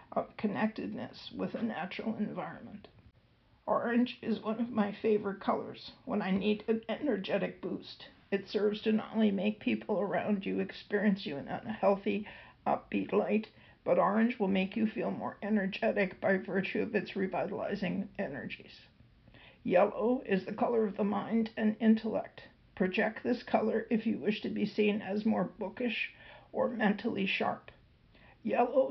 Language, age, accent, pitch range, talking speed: English, 50-69, American, 200-230 Hz, 155 wpm